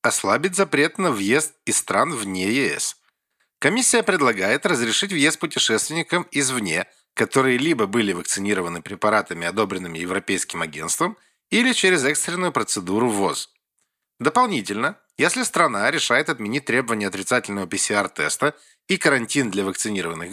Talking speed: 115 wpm